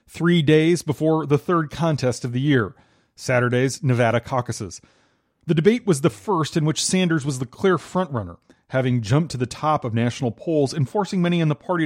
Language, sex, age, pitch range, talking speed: English, male, 30-49, 120-155 Hz, 190 wpm